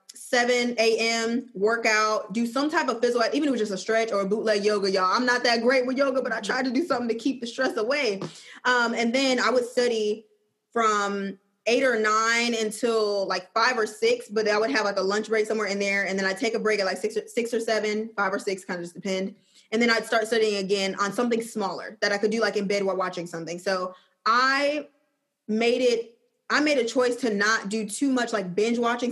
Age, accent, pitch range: 20-39, American, 205-245 Hz